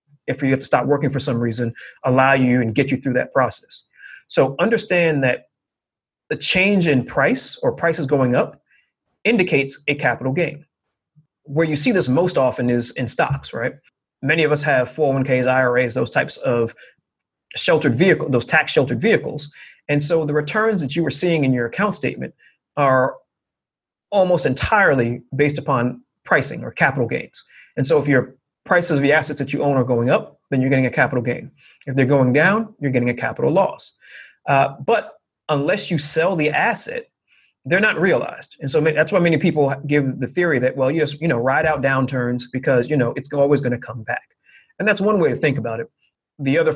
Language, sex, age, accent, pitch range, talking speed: English, male, 30-49, American, 125-155 Hz, 195 wpm